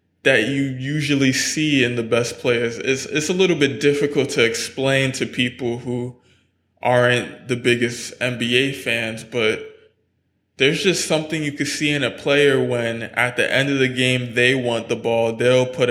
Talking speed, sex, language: 175 wpm, male, English